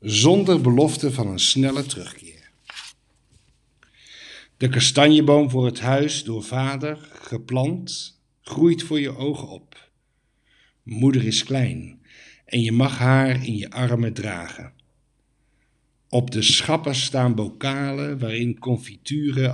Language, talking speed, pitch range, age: Dutch, 115 wpm, 110-135 Hz, 60-79